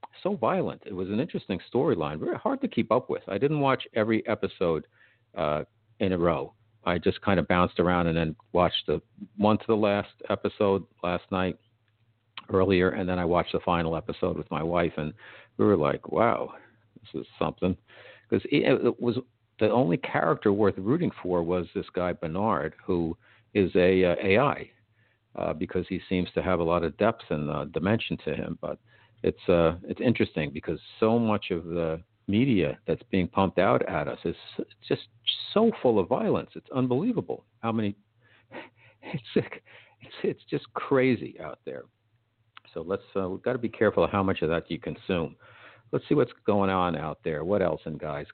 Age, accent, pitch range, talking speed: 50-69, American, 85-110 Hz, 185 wpm